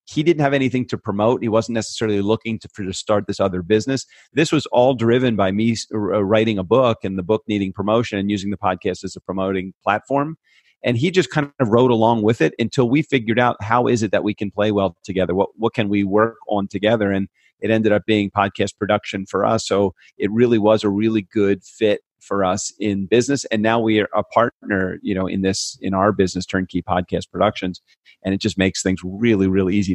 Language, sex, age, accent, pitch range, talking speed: English, male, 40-59, American, 95-110 Hz, 220 wpm